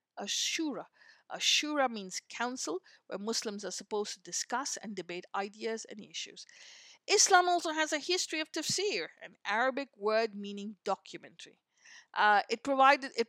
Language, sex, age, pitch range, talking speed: English, female, 50-69, 220-285 Hz, 135 wpm